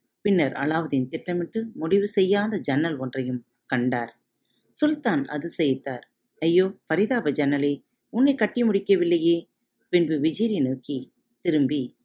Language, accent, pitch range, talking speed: Tamil, native, 140-195 Hz, 70 wpm